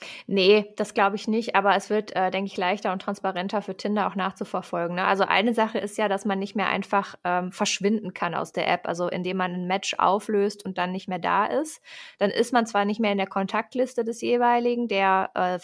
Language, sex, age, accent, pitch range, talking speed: German, female, 20-39, German, 195-220 Hz, 225 wpm